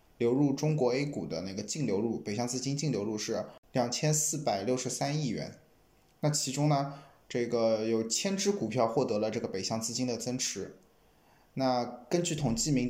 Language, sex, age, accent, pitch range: Chinese, male, 20-39, native, 115-145 Hz